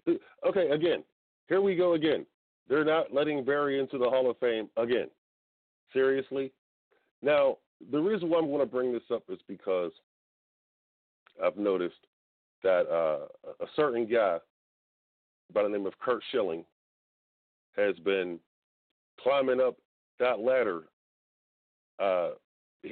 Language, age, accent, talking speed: English, 40-59, American, 130 wpm